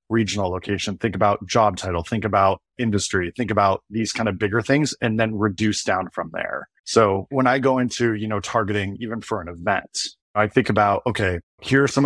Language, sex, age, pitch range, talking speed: English, male, 20-39, 100-120 Hz, 205 wpm